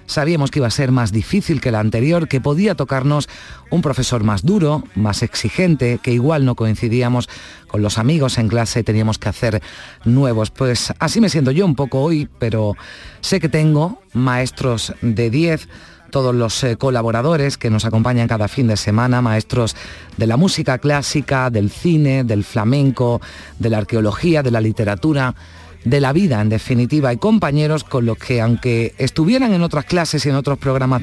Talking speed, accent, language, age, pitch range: 180 wpm, Spanish, Spanish, 30-49, 115-150 Hz